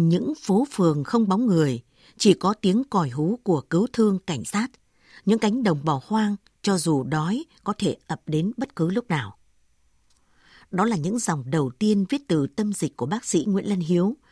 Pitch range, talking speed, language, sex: 160-215 Hz, 200 wpm, Vietnamese, female